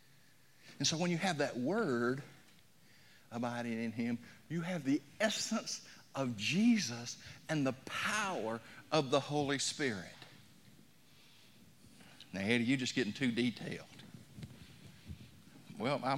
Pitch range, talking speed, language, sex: 120-155 Hz, 115 wpm, English, male